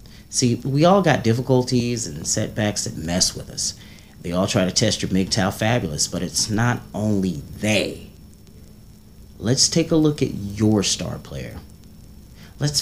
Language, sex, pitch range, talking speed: English, male, 95-125 Hz, 155 wpm